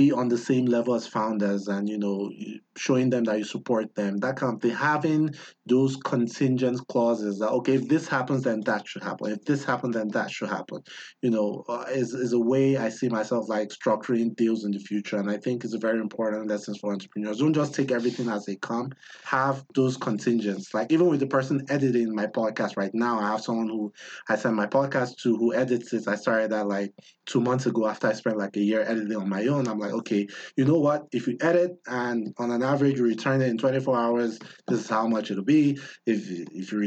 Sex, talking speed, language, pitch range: male, 230 wpm, English, 110-135 Hz